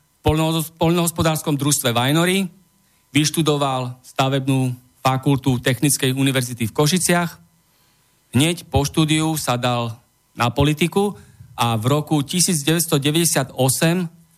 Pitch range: 130-155 Hz